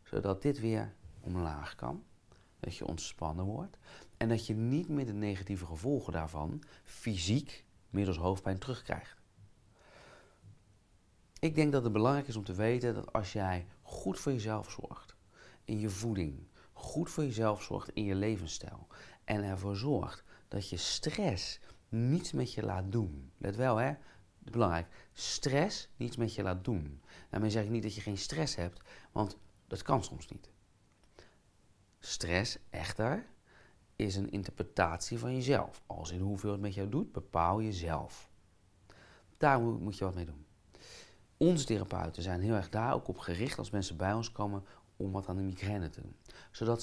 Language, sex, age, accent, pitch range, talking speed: Dutch, male, 40-59, Dutch, 95-115 Hz, 165 wpm